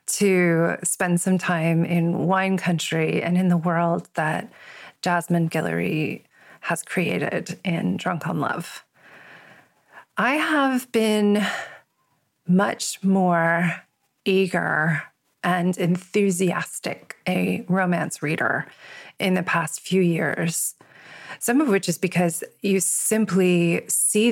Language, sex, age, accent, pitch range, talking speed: English, female, 30-49, American, 170-200 Hz, 110 wpm